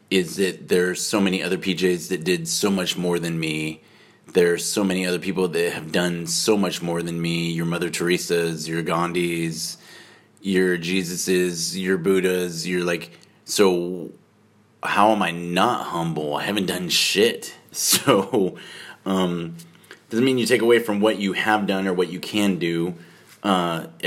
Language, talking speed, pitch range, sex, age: English, 170 wpm, 85-100 Hz, male, 30-49